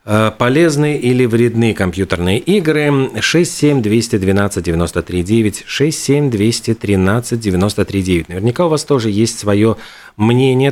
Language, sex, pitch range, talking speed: Russian, male, 95-130 Hz, 120 wpm